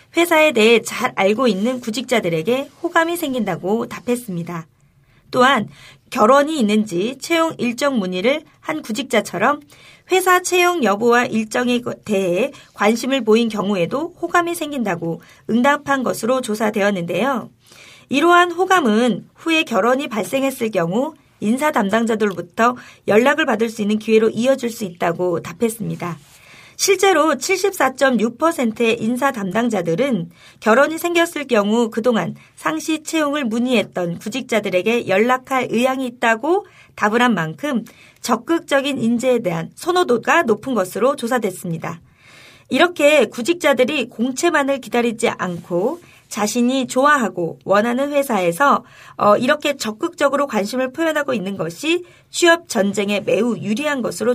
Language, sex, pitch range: Korean, female, 205-280 Hz